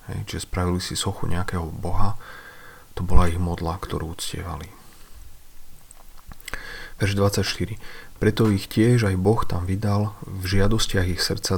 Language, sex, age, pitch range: Slovak, male, 40-59, 90-100 Hz